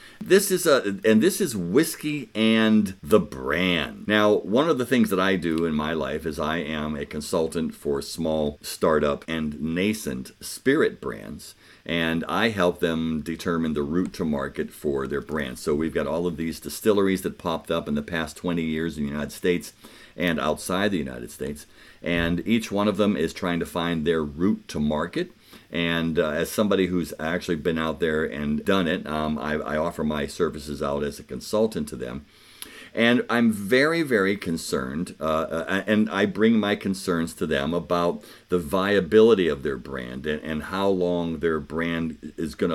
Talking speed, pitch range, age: 185 wpm, 80-100 Hz, 50-69